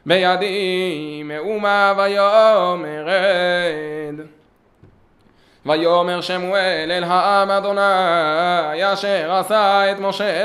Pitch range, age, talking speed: 170-200 Hz, 20-39, 75 wpm